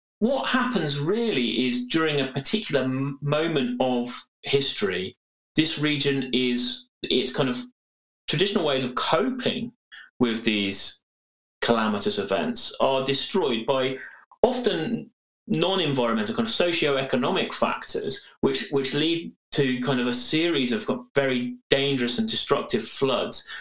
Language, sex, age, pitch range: English, male, 30-49, 120-190 Hz